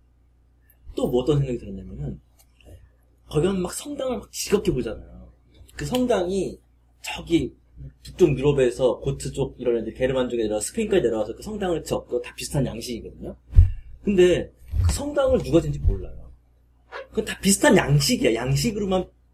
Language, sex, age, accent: Korean, male, 30-49, native